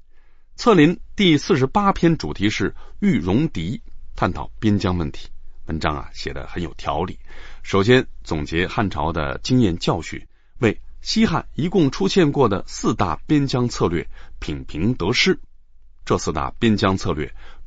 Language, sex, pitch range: Chinese, male, 75-125 Hz